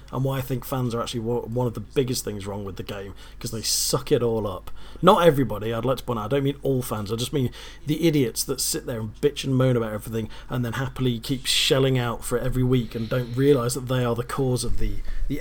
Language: English